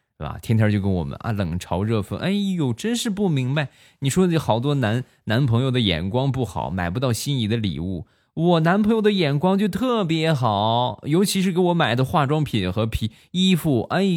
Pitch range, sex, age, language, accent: 100-145 Hz, male, 20-39, Chinese, native